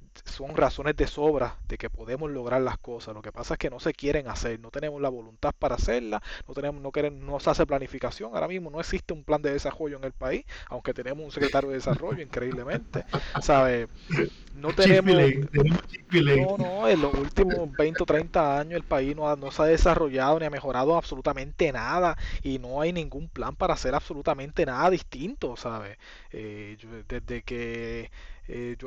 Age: 20-39